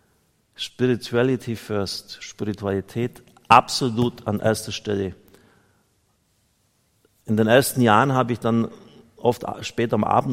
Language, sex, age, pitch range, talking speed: German, male, 50-69, 95-115 Hz, 105 wpm